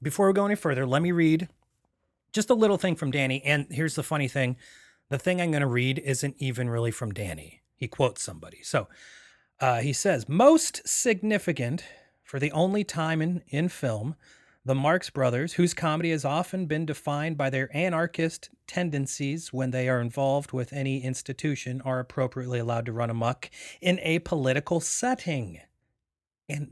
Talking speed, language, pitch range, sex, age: 175 wpm, English, 130-170 Hz, male, 30-49